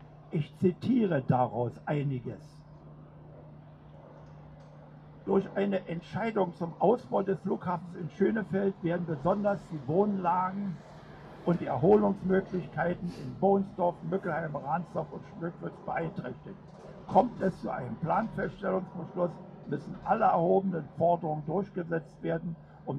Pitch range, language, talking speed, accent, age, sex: 150-190 Hz, German, 100 wpm, German, 60-79, male